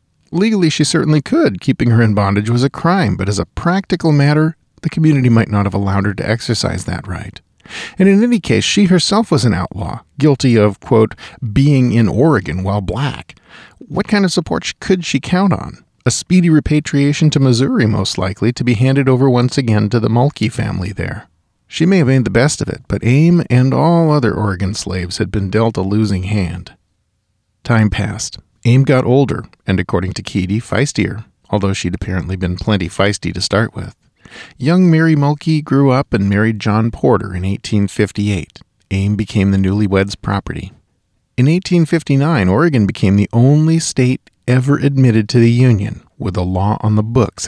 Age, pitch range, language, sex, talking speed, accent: 40-59, 100-140 Hz, English, male, 180 wpm, American